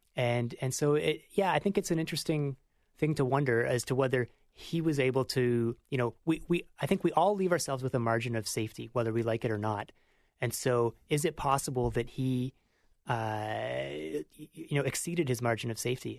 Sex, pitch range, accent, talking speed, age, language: male, 115-145 Hz, American, 210 wpm, 30-49, English